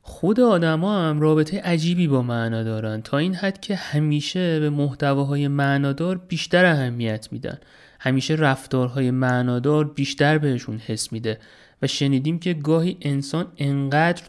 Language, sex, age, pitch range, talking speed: Persian, male, 30-49, 125-170 Hz, 150 wpm